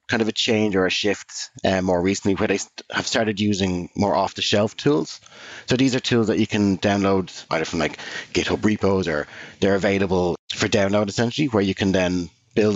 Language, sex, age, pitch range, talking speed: English, male, 30-49, 90-110 Hz, 200 wpm